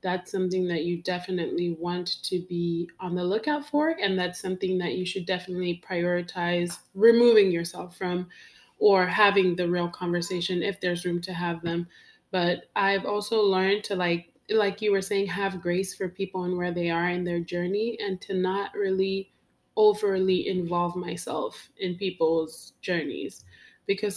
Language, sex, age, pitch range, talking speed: English, female, 20-39, 180-210 Hz, 165 wpm